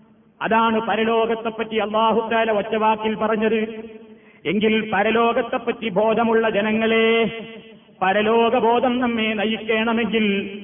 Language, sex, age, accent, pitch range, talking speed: Malayalam, male, 30-49, native, 220-245 Hz, 75 wpm